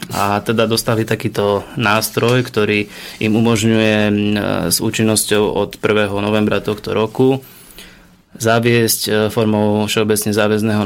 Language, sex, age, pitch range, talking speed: Slovak, male, 20-39, 100-110 Hz, 105 wpm